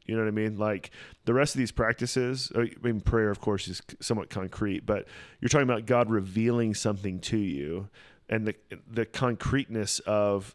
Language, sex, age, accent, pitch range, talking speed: English, male, 30-49, American, 95-110 Hz, 190 wpm